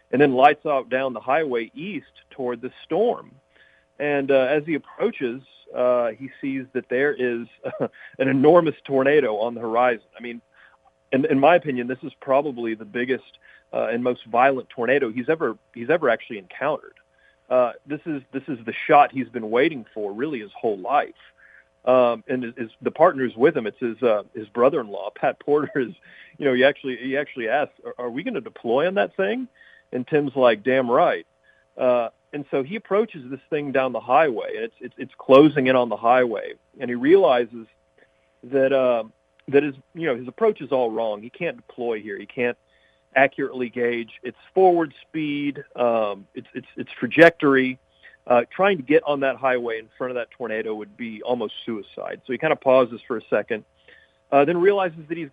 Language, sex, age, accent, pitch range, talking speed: English, male, 40-59, American, 120-145 Hz, 195 wpm